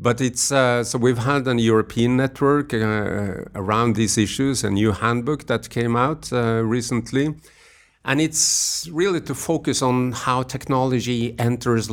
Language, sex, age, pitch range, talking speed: English, male, 50-69, 100-125 Hz, 150 wpm